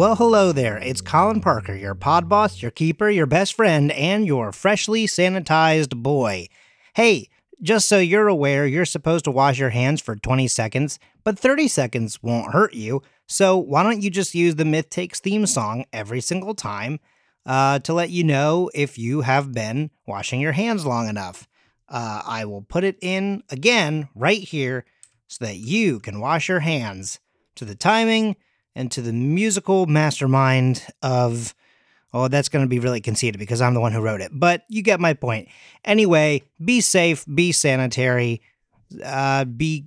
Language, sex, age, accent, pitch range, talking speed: English, male, 30-49, American, 125-185 Hz, 180 wpm